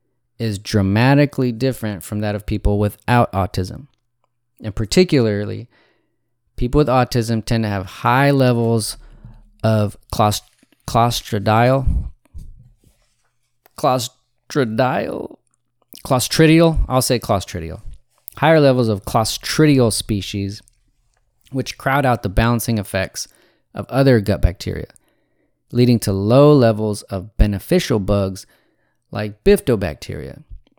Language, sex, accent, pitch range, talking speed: English, male, American, 105-125 Hz, 95 wpm